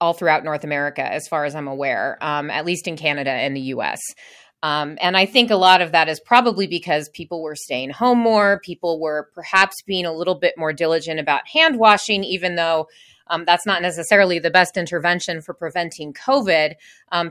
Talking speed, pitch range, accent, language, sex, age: 200 wpm, 155-190 Hz, American, English, female, 30-49